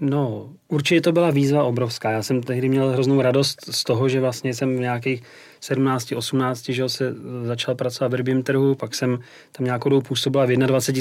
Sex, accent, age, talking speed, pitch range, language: male, native, 30-49, 195 wpm, 125-140 Hz, Czech